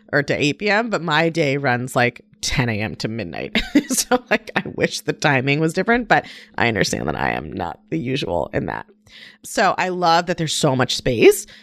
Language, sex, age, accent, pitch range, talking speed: English, female, 30-49, American, 145-220 Hz, 195 wpm